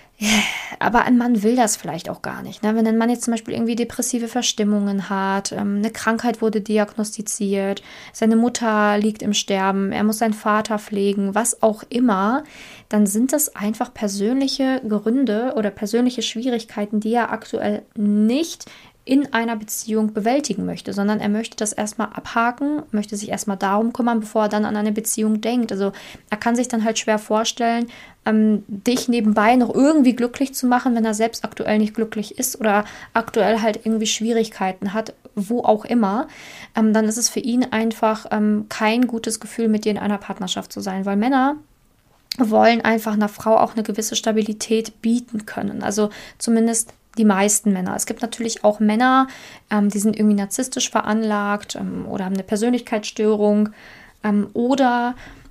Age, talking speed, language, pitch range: 20-39, 165 wpm, German, 210-235 Hz